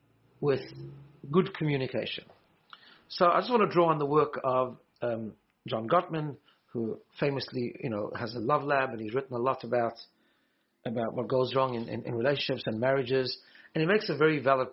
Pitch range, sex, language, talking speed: 125-160 Hz, male, English, 185 wpm